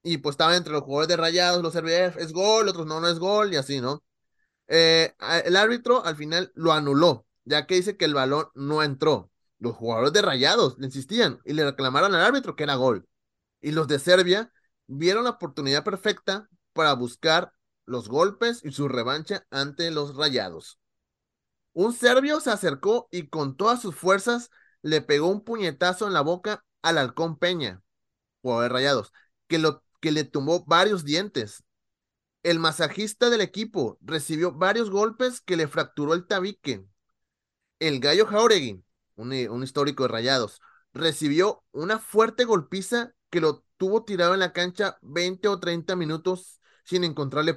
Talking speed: 170 wpm